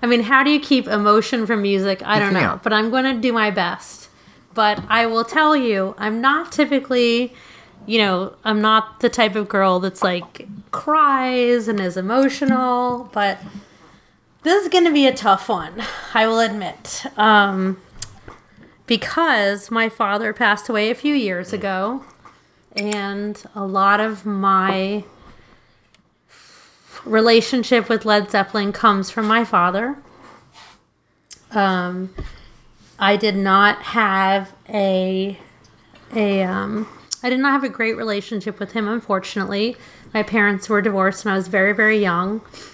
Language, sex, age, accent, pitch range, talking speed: English, female, 30-49, American, 195-235 Hz, 145 wpm